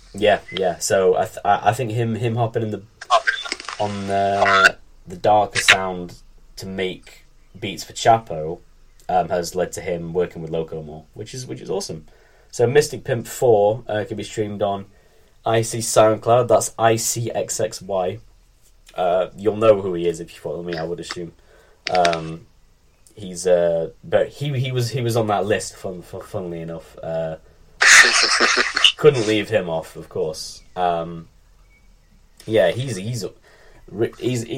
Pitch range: 85-115 Hz